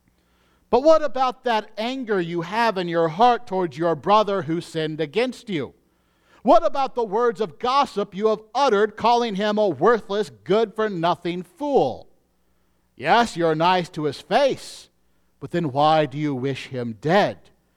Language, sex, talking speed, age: English, male, 155 wpm, 50-69